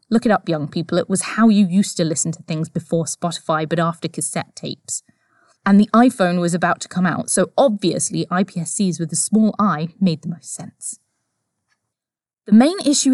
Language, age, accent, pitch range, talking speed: English, 20-39, British, 175-225 Hz, 190 wpm